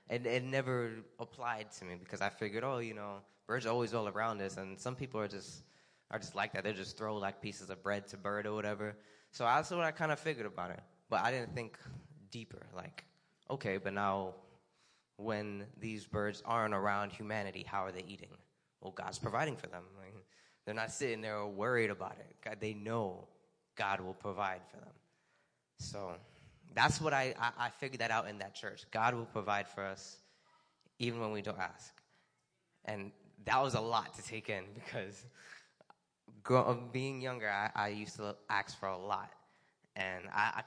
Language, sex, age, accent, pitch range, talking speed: English, male, 20-39, American, 100-120 Hz, 195 wpm